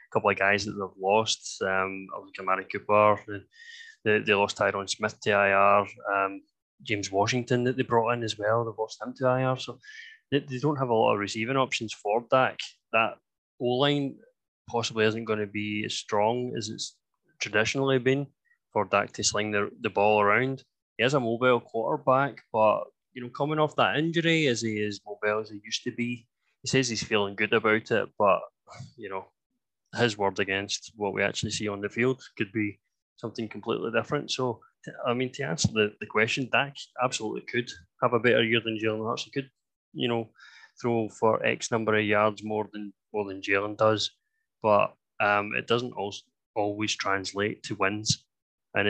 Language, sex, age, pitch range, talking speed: English, male, 20-39, 105-125 Hz, 190 wpm